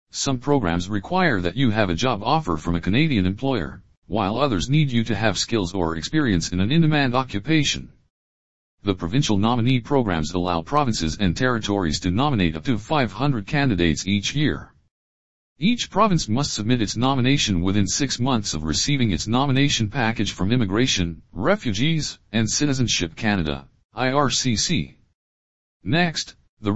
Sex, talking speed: male, 145 wpm